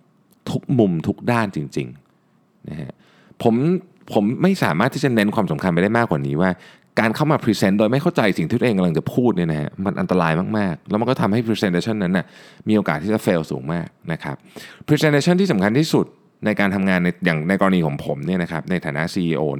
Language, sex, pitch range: Thai, male, 95-140 Hz